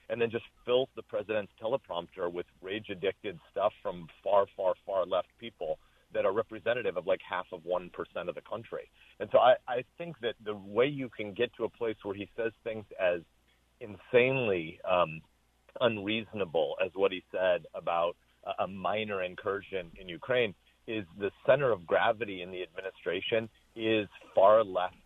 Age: 40-59